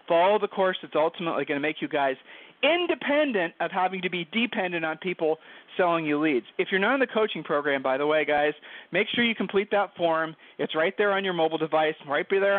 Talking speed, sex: 225 wpm, male